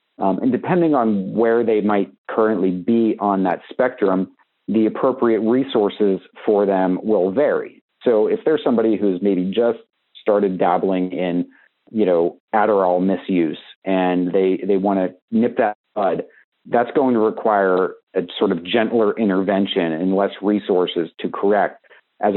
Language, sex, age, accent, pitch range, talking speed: English, male, 40-59, American, 95-110 Hz, 150 wpm